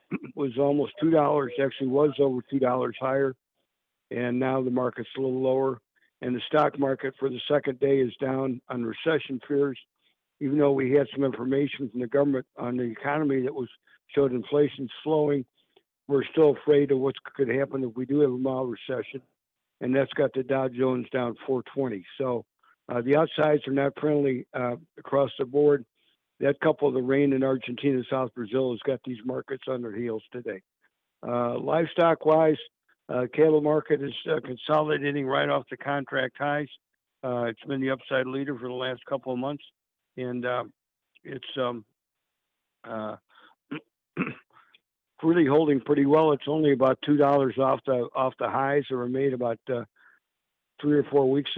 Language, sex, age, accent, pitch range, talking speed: English, male, 60-79, American, 125-145 Hz, 170 wpm